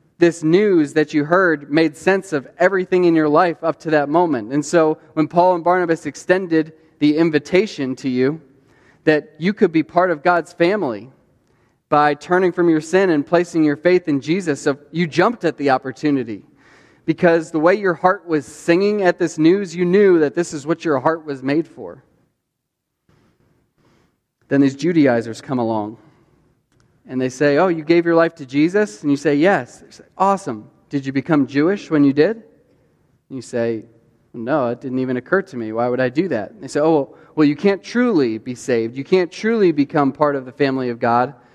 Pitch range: 135-170 Hz